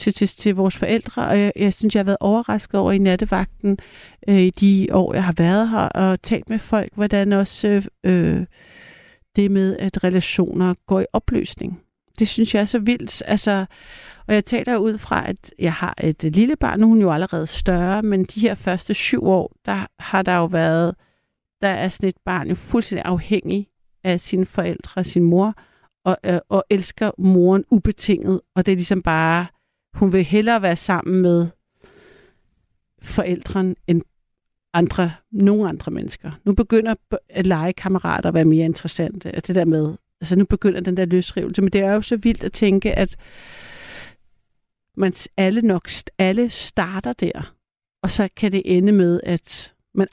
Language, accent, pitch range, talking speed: Danish, native, 175-205 Hz, 180 wpm